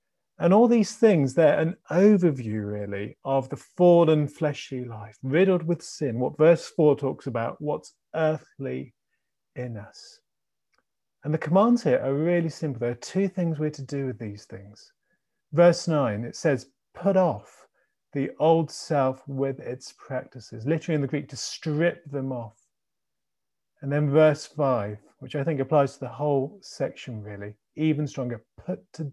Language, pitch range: English, 130-170 Hz